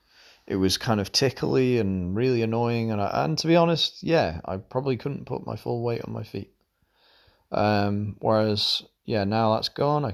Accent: British